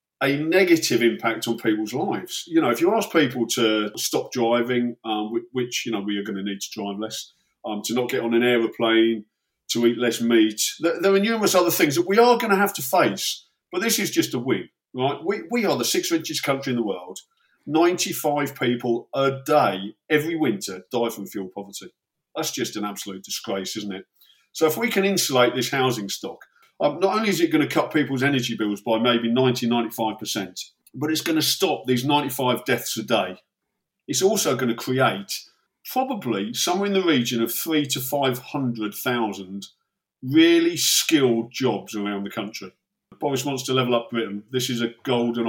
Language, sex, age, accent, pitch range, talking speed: English, male, 50-69, British, 110-155 Hz, 195 wpm